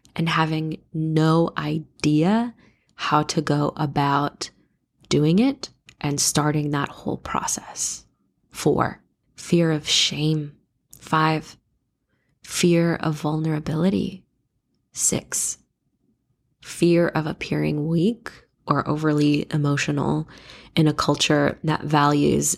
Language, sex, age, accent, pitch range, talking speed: English, female, 20-39, American, 150-175 Hz, 95 wpm